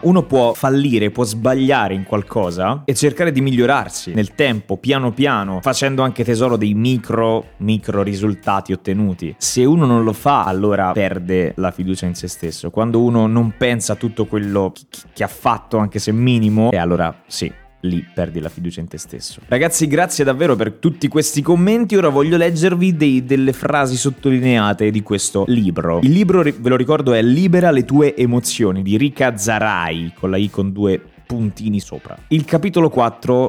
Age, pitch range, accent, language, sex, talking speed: 20-39, 100-145 Hz, native, Italian, male, 175 wpm